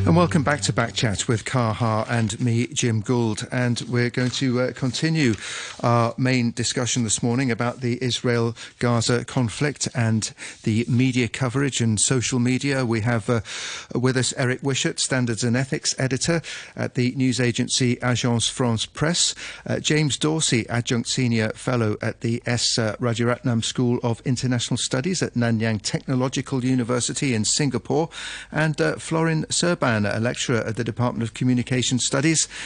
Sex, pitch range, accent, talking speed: male, 115-130 Hz, British, 155 wpm